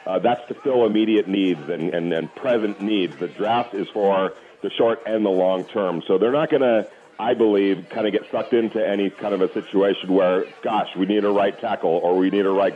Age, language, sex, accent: 40-59, English, male, American